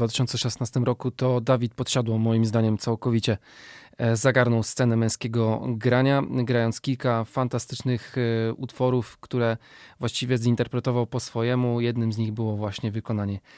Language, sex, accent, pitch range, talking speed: Polish, male, native, 115-130 Hz, 125 wpm